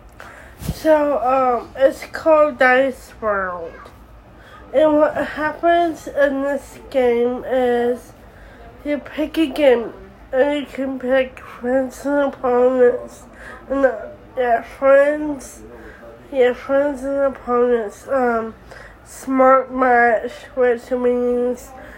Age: 20-39